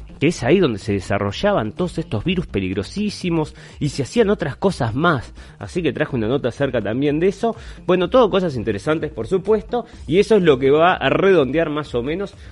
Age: 30-49